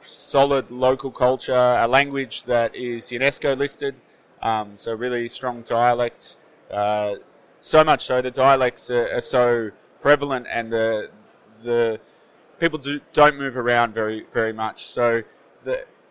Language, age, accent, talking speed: English, 20-39, Australian, 140 wpm